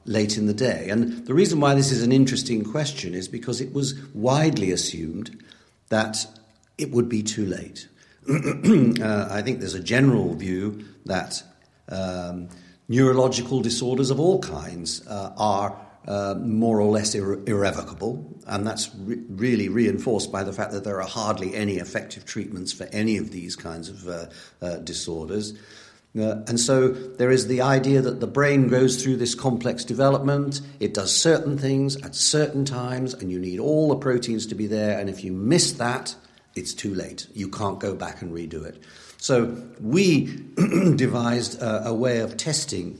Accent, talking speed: British, 175 wpm